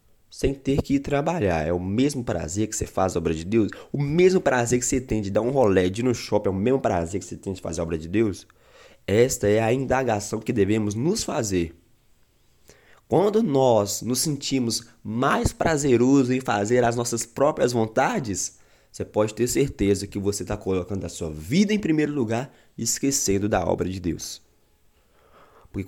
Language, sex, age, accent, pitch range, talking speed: Portuguese, male, 20-39, Brazilian, 95-130 Hz, 190 wpm